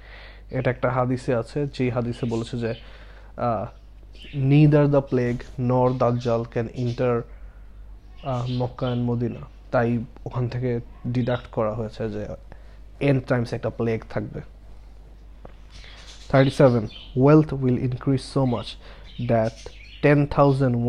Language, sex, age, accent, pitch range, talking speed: Bengali, male, 20-39, native, 110-130 Hz, 110 wpm